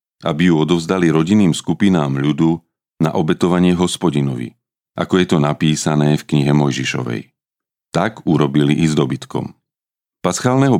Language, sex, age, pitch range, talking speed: Slovak, male, 40-59, 75-90 Hz, 120 wpm